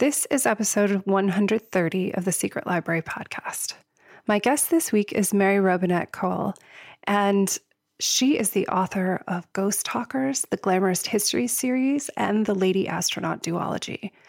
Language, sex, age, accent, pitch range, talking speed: English, female, 30-49, American, 185-215 Hz, 145 wpm